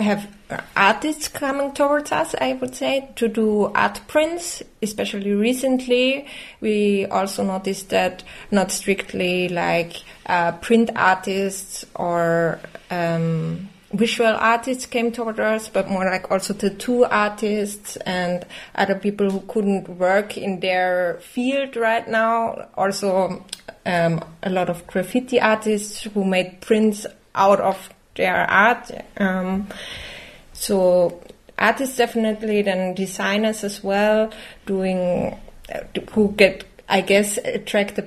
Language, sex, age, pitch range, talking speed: Swedish, female, 20-39, 185-225 Hz, 120 wpm